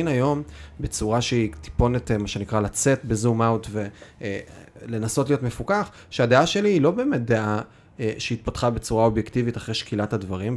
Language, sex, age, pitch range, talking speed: Hebrew, male, 30-49, 105-130 Hz, 135 wpm